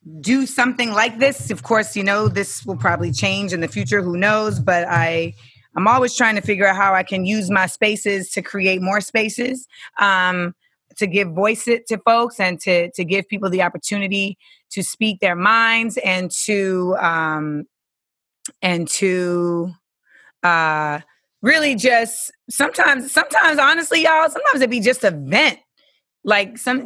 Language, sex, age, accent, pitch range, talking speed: English, female, 30-49, American, 185-240 Hz, 160 wpm